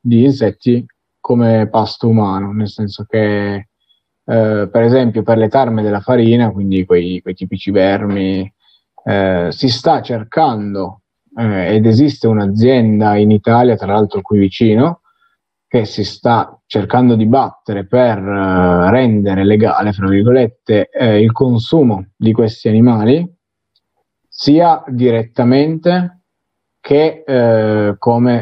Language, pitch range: Italian, 100-125 Hz